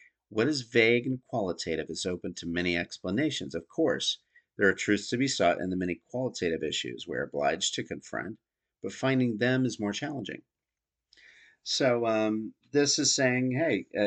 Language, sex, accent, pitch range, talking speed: English, male, American, 95-115 Hz, 170 wpm